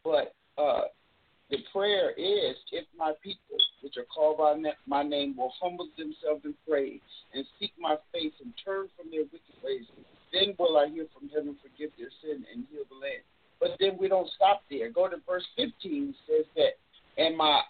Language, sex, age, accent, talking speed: English, male, 50-69, American, 195 wpm